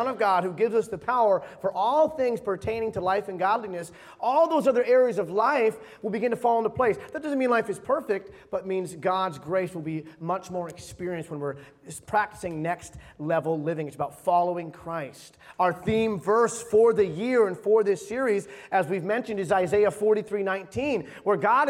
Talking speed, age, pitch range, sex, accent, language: 195 wpm, 30-49, 190-250 Hz, male, American, English